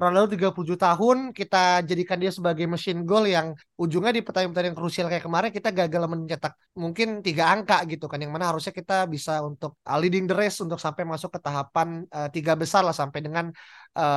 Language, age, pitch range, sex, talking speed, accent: Indonesian, 20-39, 170-195 Hz, male, 200 wpm, native